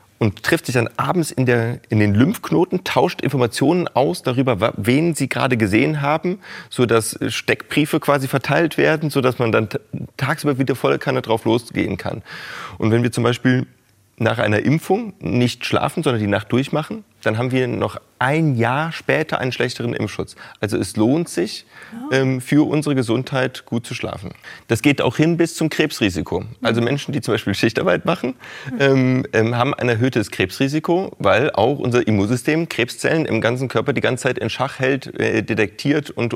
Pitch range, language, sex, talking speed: 110-140 Hz, German, male, 170 wpm